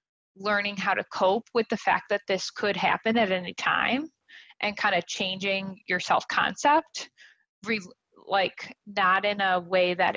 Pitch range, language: 180-210 Hz, English